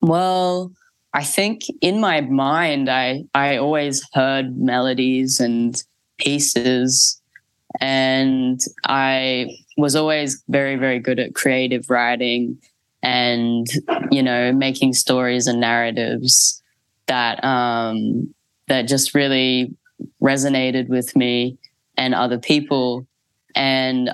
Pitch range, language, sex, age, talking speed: 125-135 Hz, English, female, 10-29, 105 wpm